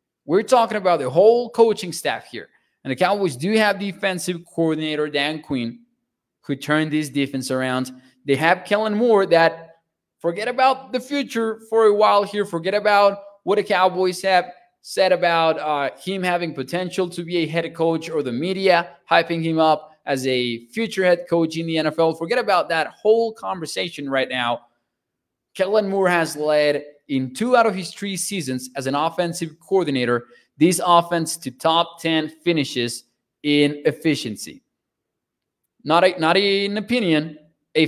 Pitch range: 150-190 Hz